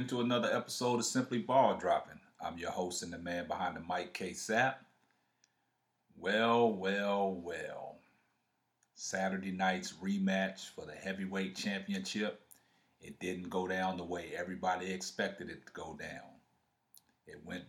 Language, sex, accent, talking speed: English, male, American, 145 wpm